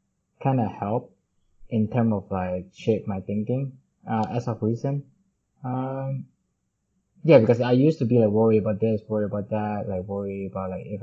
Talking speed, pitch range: 175 wpm, 95-125 Hz